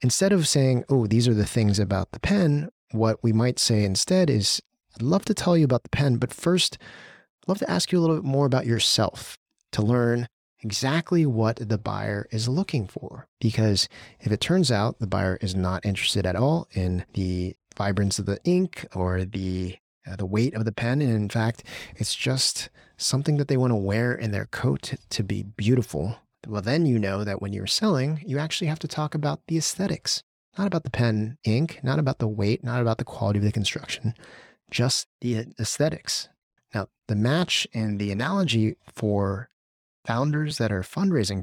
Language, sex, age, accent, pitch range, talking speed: English, male, 30-49, American, 105-140 Hz, 195 wpm